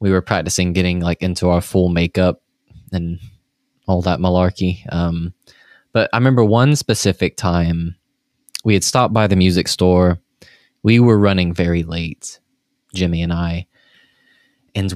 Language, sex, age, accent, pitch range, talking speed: English, male, 20-39, American, 90-110 Hz, 145 wpm